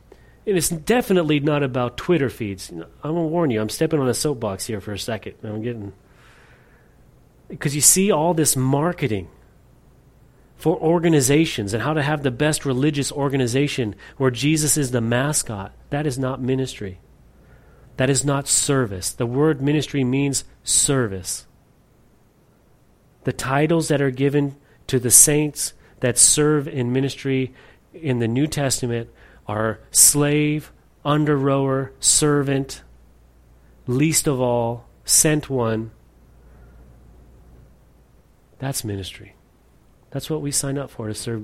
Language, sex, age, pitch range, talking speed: English, male, 30-49, 105-145 Hz, 135 wpm